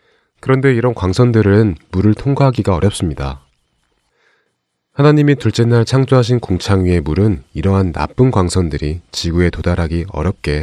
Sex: male